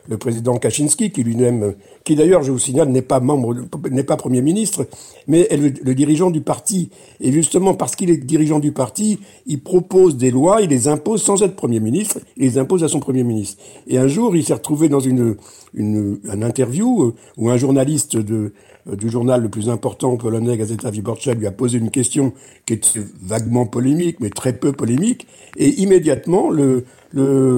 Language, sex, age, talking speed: French, male, 60-79, 200 wpm